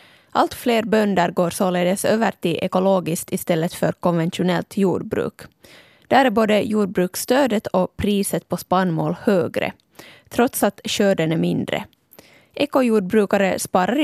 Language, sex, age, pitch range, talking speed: Swedish, female, 20-39, 180-210 Hz, 120 wpm